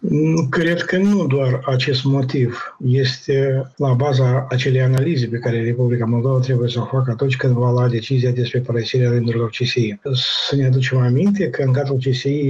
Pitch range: 120-135 Hz